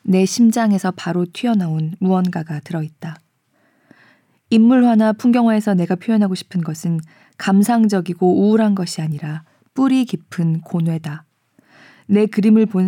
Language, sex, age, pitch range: Korean, female, 20-39, 160-200 Hz